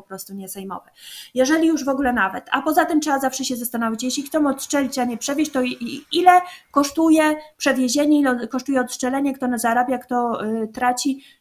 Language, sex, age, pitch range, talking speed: Polish, female, 20-39, 220-265 Hz, 180 wpm